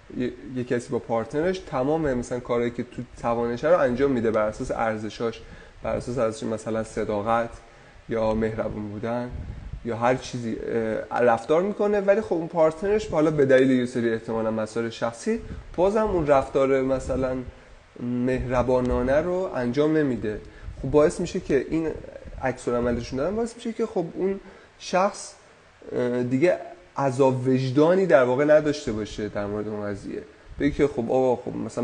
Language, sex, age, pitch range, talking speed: Persian, male, 30-49, 115-150 Hz, 145 wpm